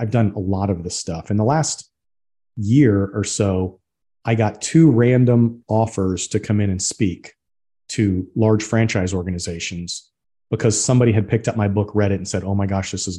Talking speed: 195 wpm